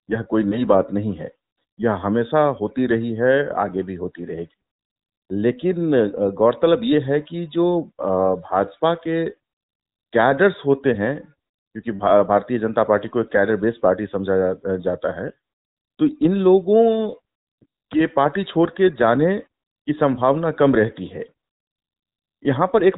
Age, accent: 50-69, native